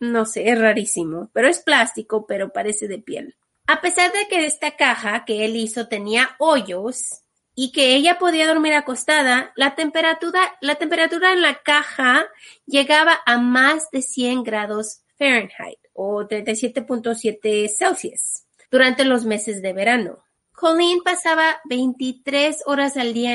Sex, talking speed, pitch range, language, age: female, 145 wpm, 225-300 Hz, Spanish, 30-49